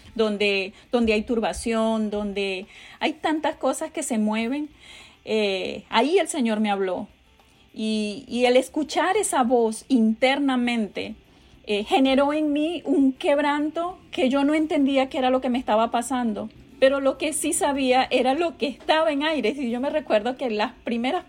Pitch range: 225-280 Hz